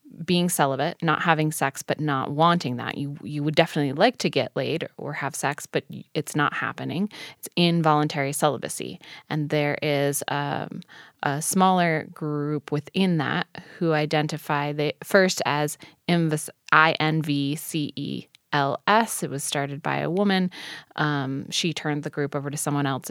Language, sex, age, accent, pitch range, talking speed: English, female, 20-39, American, 140-160 Hz, 150 wpm